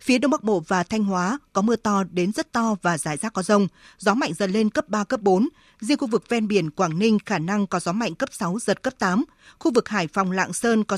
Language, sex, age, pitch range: Vietnamese, female, 20-39, 185-230 Hz